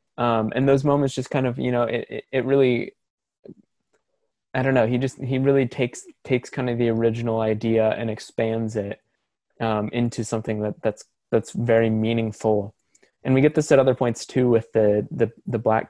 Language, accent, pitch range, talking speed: English, American, 110-125 Hz, 200 wpm